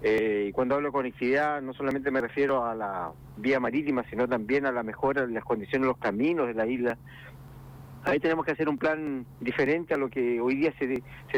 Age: 50-69